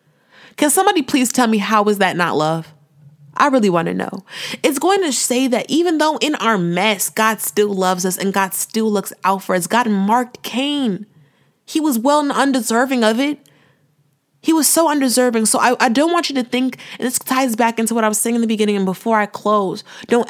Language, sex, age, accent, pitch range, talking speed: English, female, 20-39, American, 185-240 Hz, 220 wpm